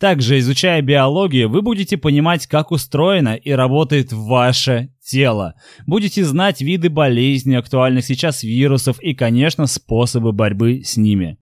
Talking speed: 130 wpm